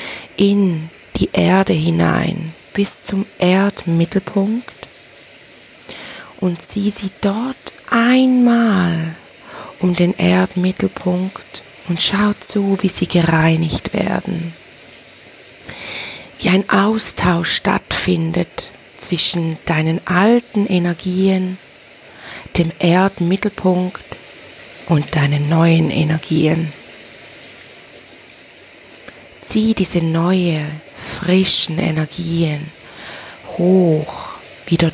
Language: German